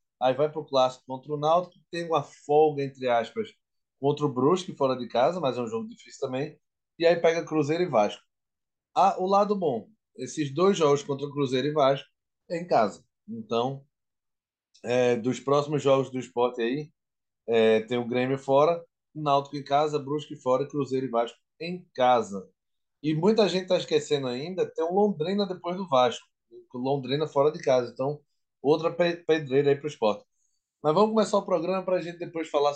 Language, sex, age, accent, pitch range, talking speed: Portuguese, male, 20-39, Brazilian, 130-170 Hz, 185 wpm